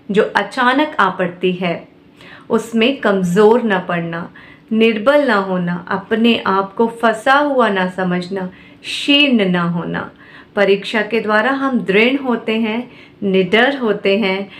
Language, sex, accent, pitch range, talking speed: Hindi, female, native, 190-250 Hz, 125 wpm